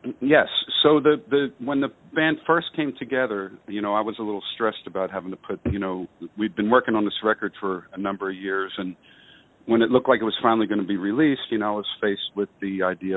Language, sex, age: English, male, 50-69